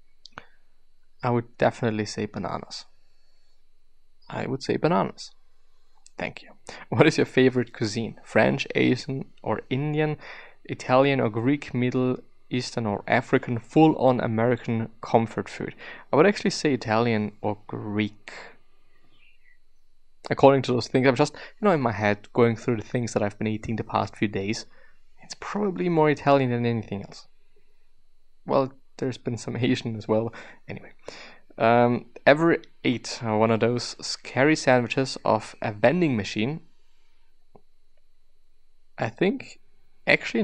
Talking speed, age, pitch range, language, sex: 135 wpm, 20-39, 110-135 Hz, English, male